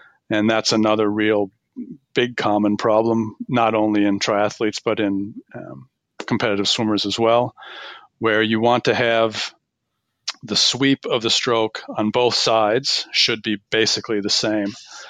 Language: English